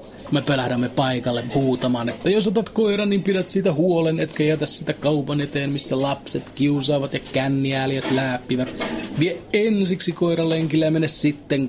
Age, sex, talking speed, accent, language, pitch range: 30-49, male, 155 wpm, native, Finnish, 120-165 Hz